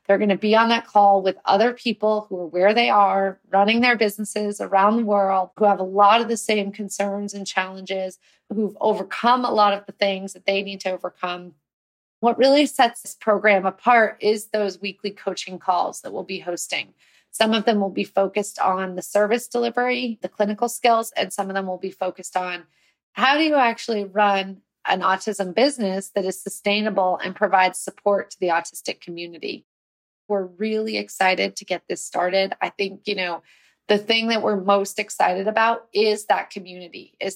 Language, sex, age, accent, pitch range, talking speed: English, female, 30-49, American, 185-220 Hz, 190 wpm